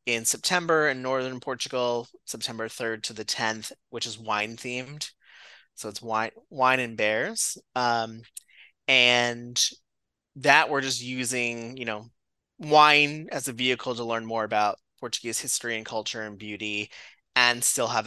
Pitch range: 105-135 Hz